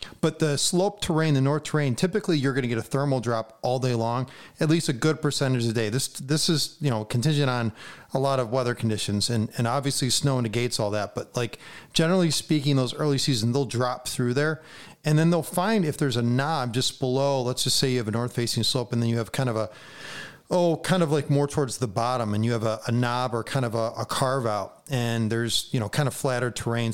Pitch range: 115-145 Hz